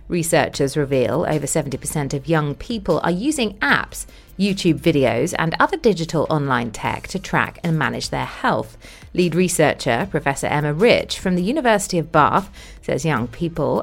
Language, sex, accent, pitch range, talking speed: English, female, British, 140-205 Hz, 155 wpm